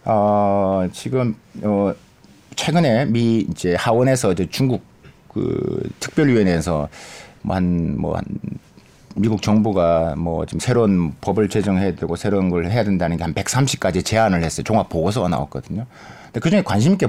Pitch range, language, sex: 95-135 Hz, Korean, male